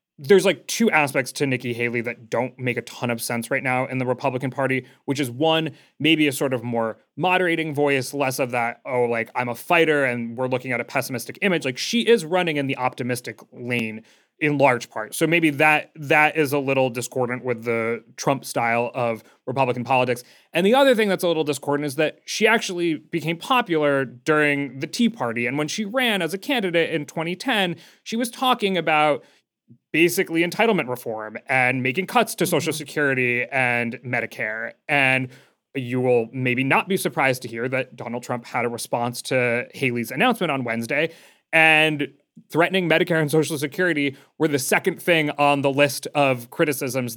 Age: 30-49